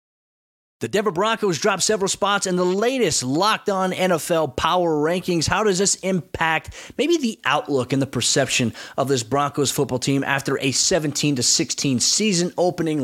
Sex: male